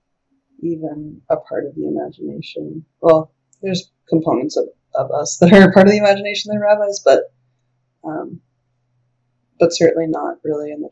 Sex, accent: female, American